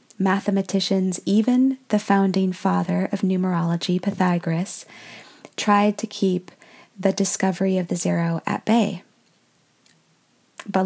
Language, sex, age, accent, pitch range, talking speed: English, female, 20-39, American, 185-205 Hz, 105 wpm